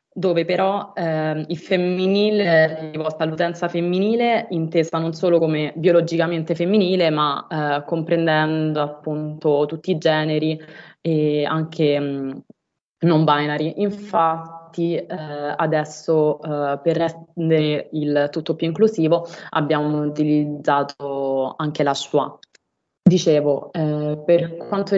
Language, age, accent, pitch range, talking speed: Italian, 20-39, native, 155-175 Hz, 110 wpm